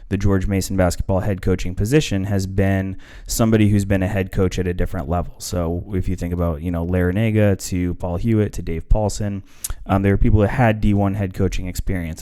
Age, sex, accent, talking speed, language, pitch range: 20-39, male, American, 215 wpm, English, 90-105 Hz